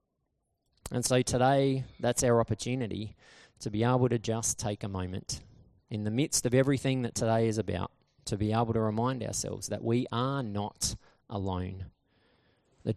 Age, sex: 20-39, male